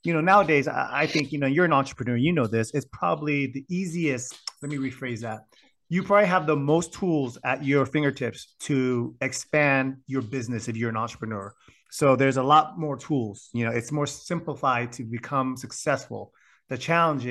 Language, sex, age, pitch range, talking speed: English, male, 30-49, 115-150 Hz, 185 wpm